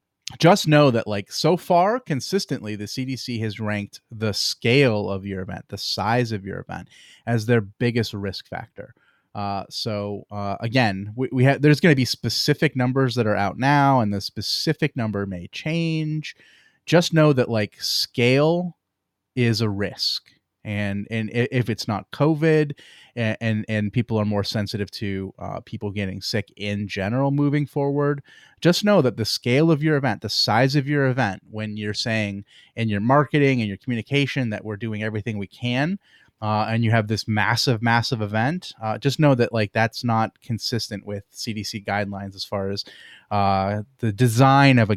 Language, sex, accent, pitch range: English, male, American, 105-130 Hz